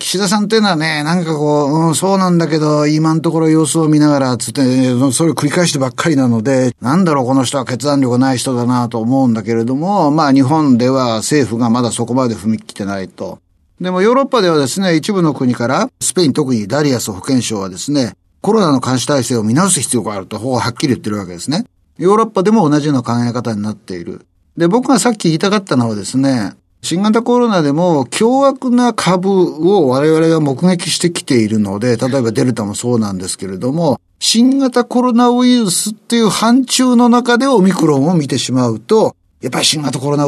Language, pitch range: Japanese, 125-205 Hz